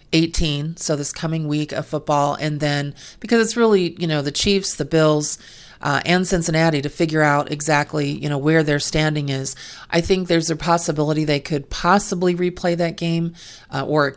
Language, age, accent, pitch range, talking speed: English, 40-59, American, 145-165 Hz, 190 wpm